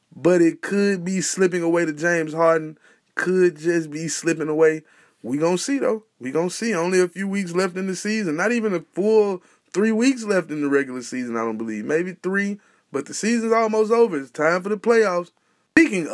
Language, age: English, 20-39